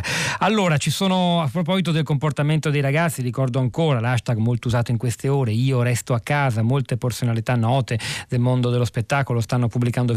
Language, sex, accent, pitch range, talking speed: Italian, male, native, 120-145 Hz, 175 wpm